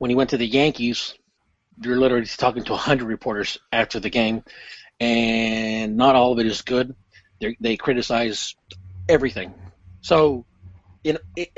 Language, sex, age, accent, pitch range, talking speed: English, male, 40-59, American, 115-150 Hz, 150 wpm